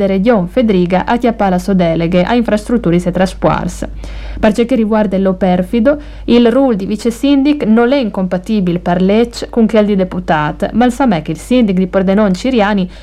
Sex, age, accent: female, 50-69, native